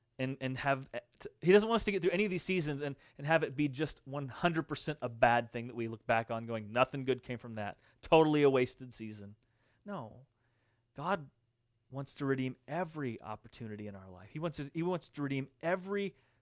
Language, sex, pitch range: English, male, 115-150 Hz